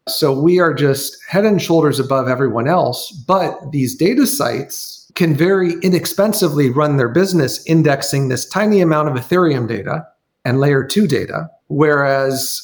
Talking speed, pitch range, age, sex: 150 wpm, 145-180 Hz, 40-59, male